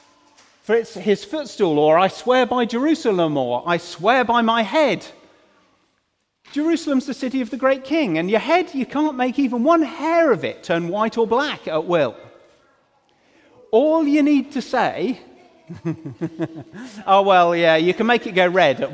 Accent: British